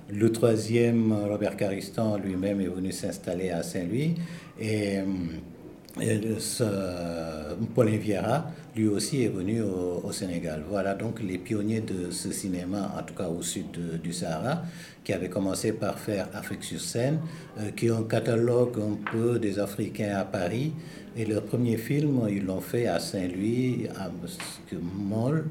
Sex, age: male, 60-79